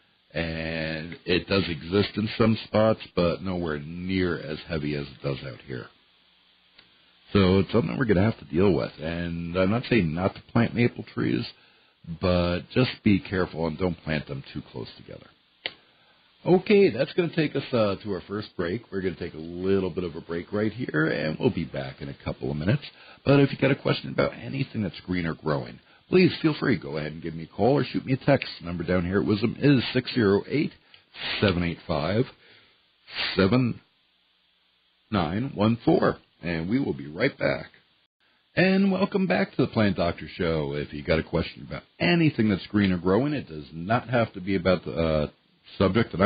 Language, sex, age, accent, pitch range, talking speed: English, male, 60-79, American, 80-115 Hz, 195 wpm